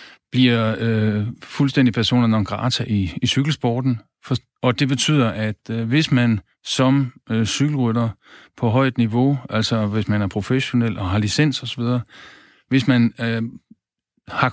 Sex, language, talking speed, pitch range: male, Danish, 150 wpm, 110-130 Hz